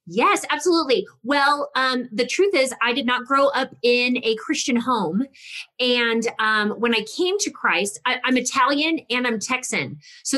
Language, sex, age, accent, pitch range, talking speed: English, female, 30-49, American, 210-255 Hz, 175 wpm